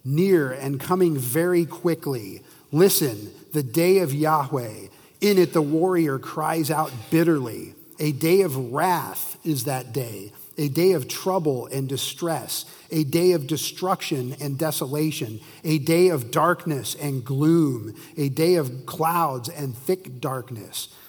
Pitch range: 135-170 Hz